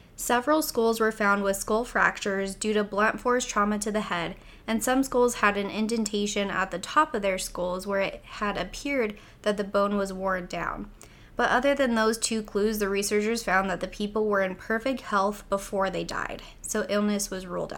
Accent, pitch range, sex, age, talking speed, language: American, 195-235 Hz, female, 10-29, 205 wpm, English